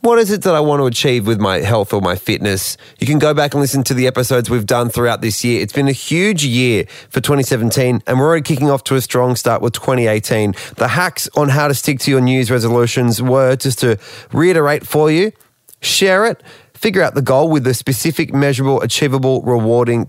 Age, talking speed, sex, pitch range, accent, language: 30-49, 220 wpm, male, 120-145 Hz, Australian, English